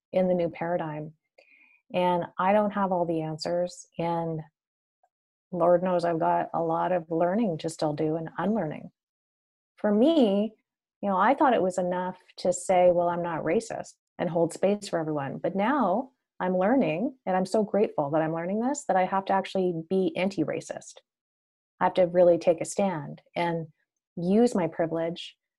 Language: English